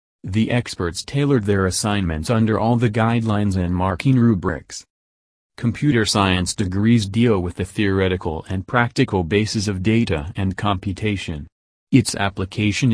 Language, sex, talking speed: English, male, 130 wpm